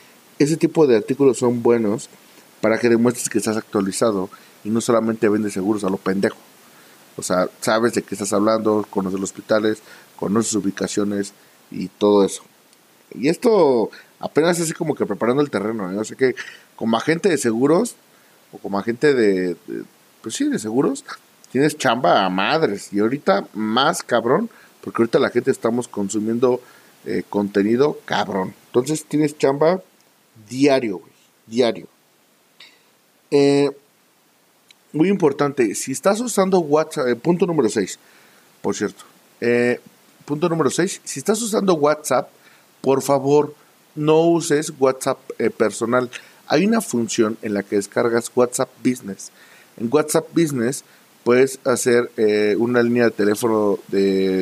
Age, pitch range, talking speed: 40-59, 105-145 Hz, 145 wpm